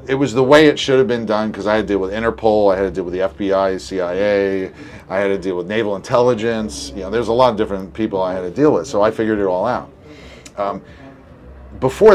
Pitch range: 100-130 Hz